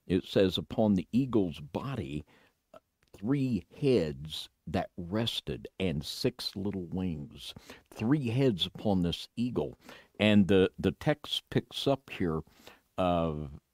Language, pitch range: English, 85-115 Hz